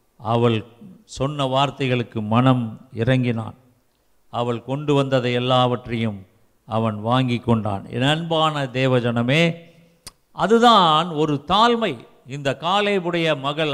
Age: 50-69